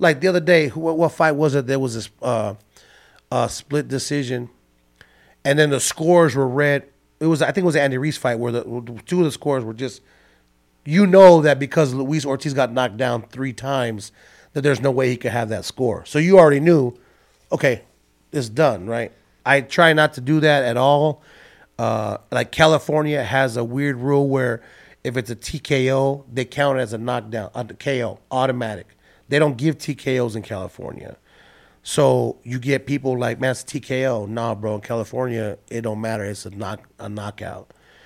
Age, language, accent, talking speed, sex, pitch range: 30-49, English, American, 190 wpm, male, 115-145 Hz